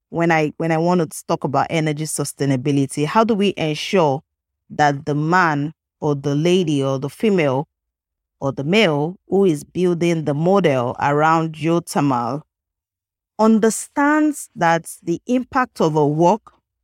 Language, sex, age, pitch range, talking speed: English, female, 30-49, 150-200 Hz, 145 wpm